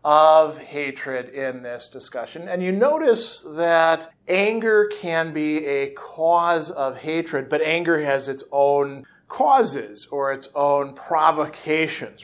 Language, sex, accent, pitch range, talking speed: English, male, American, 140-175 Hz, 130 wpm